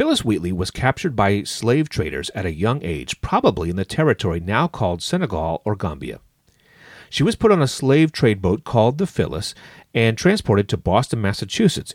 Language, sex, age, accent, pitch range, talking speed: English, male, 40-59, American, 100-140 Hz, 180 wpm